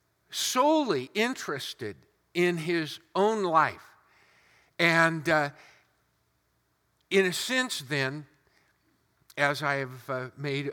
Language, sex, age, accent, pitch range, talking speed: English, male, 50-69, American, 125-170 Hz, 95 wpm